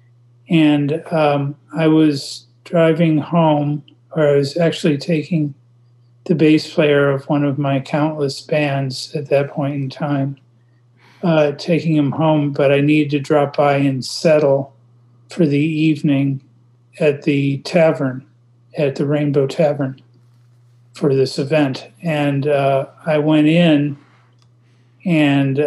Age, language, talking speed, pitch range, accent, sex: 40-59, English, 130 wpm, 130-150 Hz, American, male